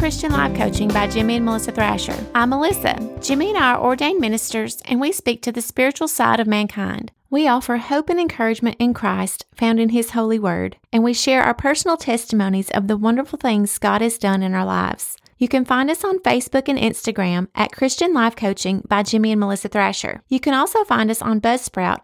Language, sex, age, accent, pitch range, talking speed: English, female, 30-49, American, 215-265 Hz, 210 wpm